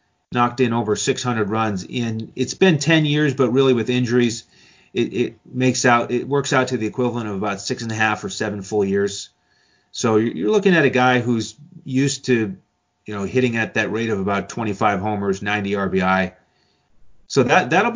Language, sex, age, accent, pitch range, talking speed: English, male, 30-49, American, 105-130 Hz, 195 wpm